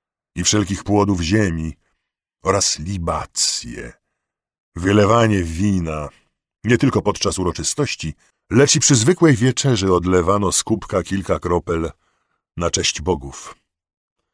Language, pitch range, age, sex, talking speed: Polish, 85-110 Hz, 50-69, male, 105 wpm